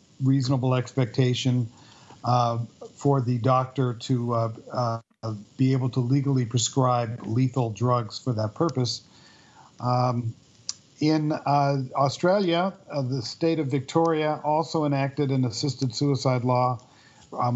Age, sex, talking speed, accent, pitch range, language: 50-69, male, 120 wpm, American, 120-140 Hz, English